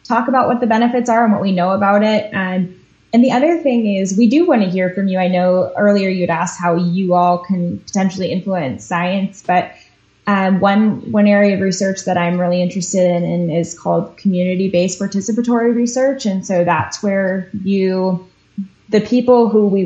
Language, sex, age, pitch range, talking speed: English, female, 10-29, 180-210 Hz, 190 wpm